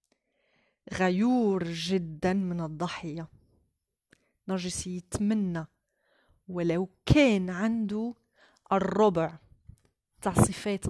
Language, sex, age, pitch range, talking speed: Arabic, female, 30-49, 170-205 Hz, 60 wpm